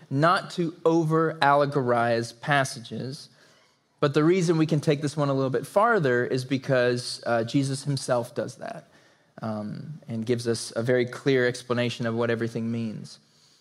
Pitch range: 125-150 Hz